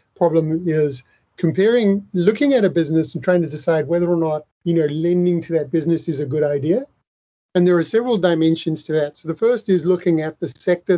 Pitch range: 160-180 Hz